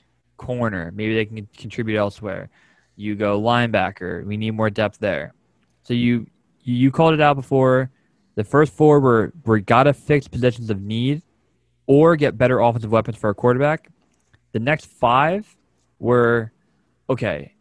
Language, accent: English, American